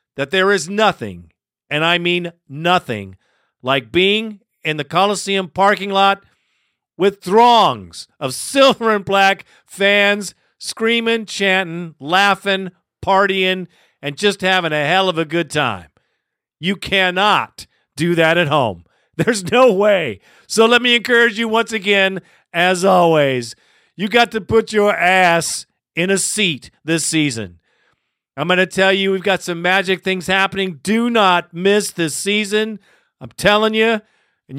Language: English